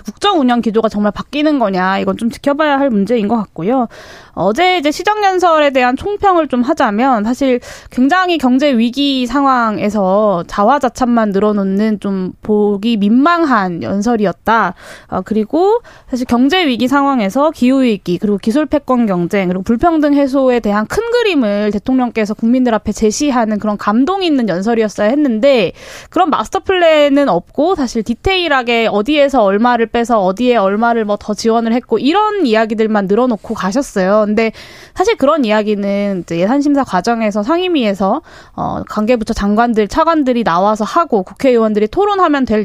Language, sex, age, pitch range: Korean, female, 20-39, 210-285 Hz